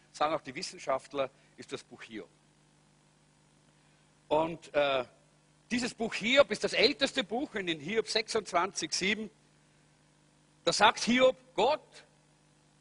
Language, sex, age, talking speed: German, male, 50-69, 115 wpm